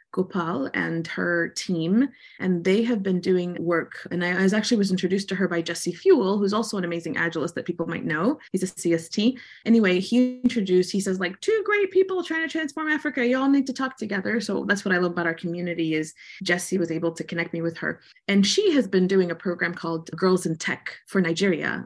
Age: 20-39